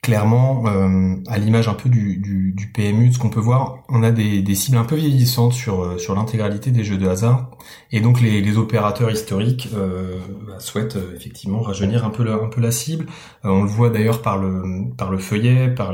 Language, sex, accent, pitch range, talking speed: French, male, French, 95-120 Hz, 220 wpm